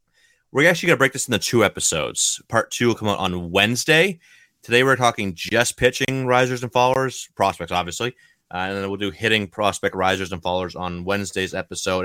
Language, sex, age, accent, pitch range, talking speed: English, male, 30-49, American, 95-125 Hz, 195 wpm